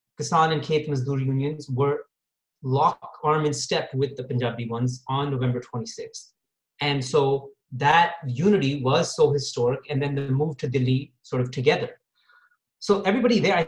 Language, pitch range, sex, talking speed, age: English, 135-165 Hz, male, 160 wpm, 30-49